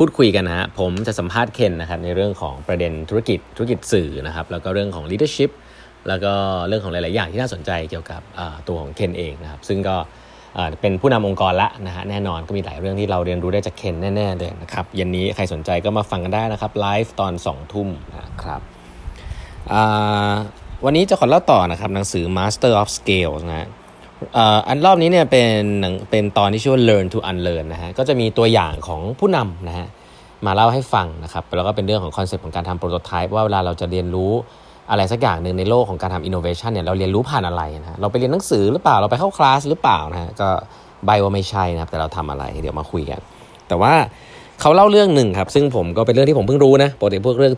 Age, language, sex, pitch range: 20-39, Thai, male, 90-110 Hz